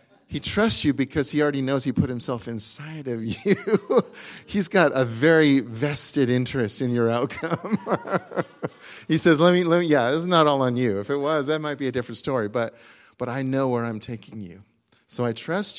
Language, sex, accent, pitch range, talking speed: English, male, American, 115-145 Hz, 210 wpm